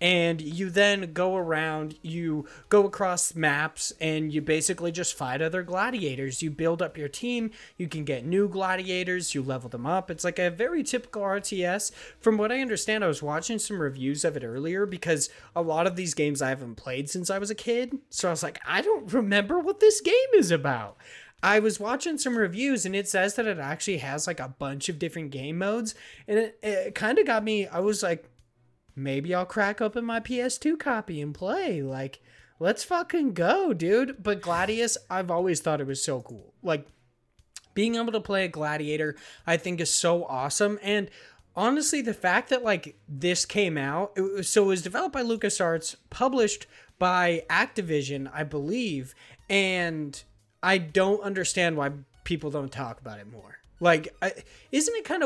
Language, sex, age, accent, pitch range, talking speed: English, male, 20-39, American, 155-215 Hz, 185 wpm